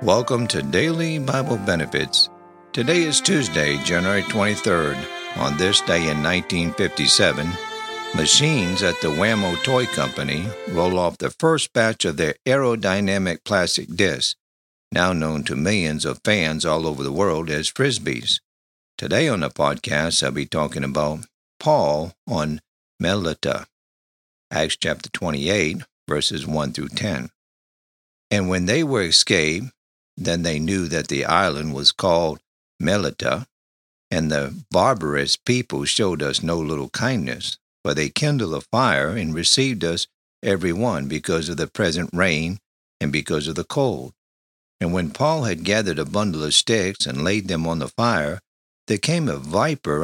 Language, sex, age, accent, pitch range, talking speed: English, male, 60-79, American, 75-110 Hz, 145 wpm